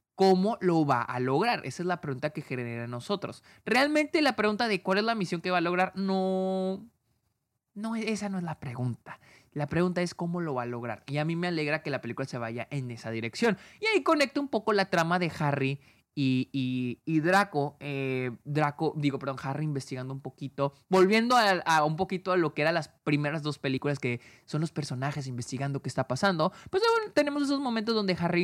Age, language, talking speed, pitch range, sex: 20-39, Spanish, 215 wpm, 130-190 Hz, male